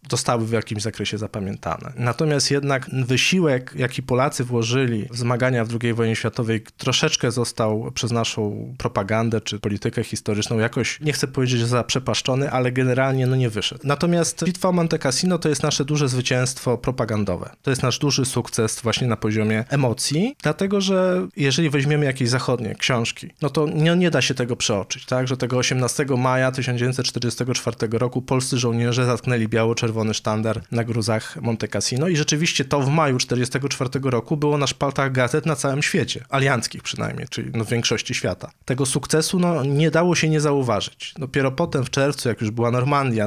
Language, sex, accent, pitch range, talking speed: Polish, male, native, 115-145 Hz, 170 wpm